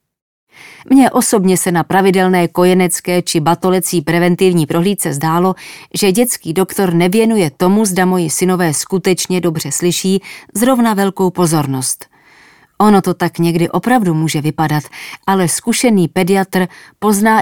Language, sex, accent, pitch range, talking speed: English, female, Czech, 165-200 Hz, 125 wpm